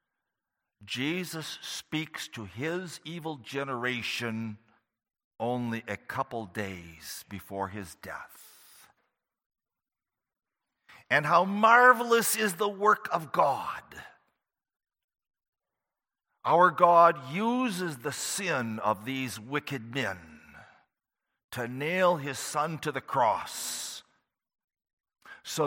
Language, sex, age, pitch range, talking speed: English, male, 50-69, 100-145 Hz, 90 wpm